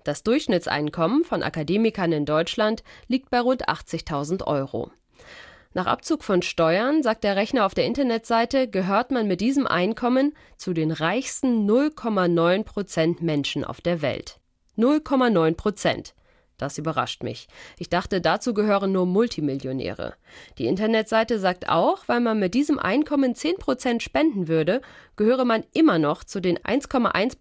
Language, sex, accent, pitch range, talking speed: German, female, German, 165-265 Hz, 145 wpm